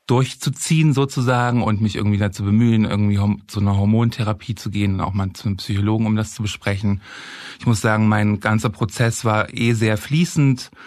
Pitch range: 105-125 Hz